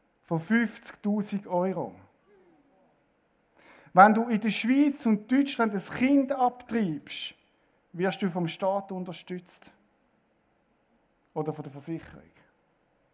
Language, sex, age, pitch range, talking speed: German, male, 50-69, 200-255 Hz, 100 wpm